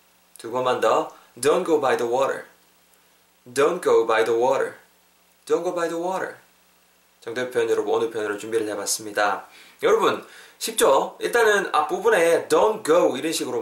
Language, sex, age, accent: Korean, male, 20-39, native